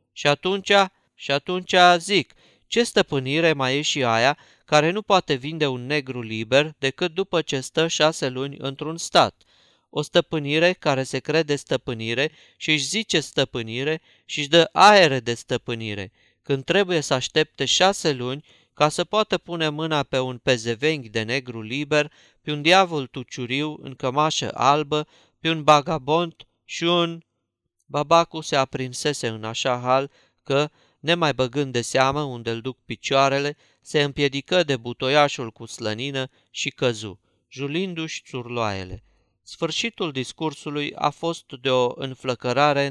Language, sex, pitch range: Romanian, male, 125-155 Hz